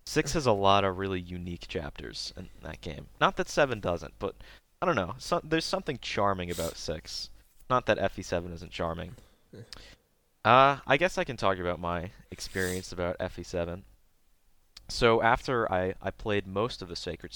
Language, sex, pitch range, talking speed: English, male, 85-105 Hz, 170 wpm